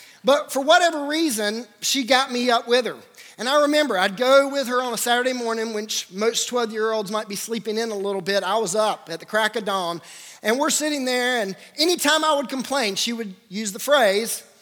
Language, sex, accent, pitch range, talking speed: English, male, American, 200-255 Hz, 220 wpm